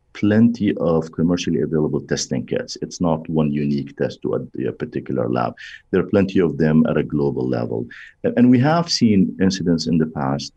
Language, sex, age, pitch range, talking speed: English, male, 50-69, 75-85 Hz, 195 wpm